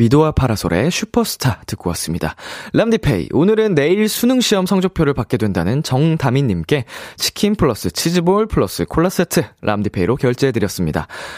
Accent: native